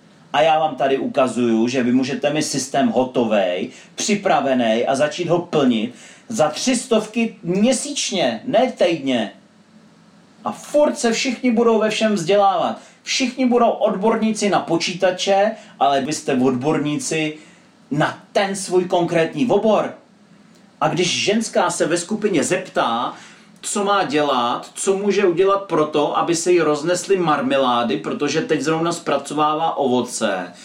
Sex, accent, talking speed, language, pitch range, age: male, native, 135 wpm, Czech, 155-205 Hz, 40-59